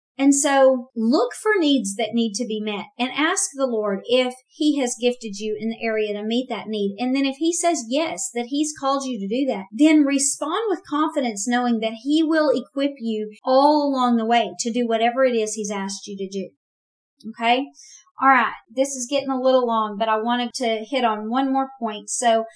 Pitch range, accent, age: 215-265 Hz, American, 40-59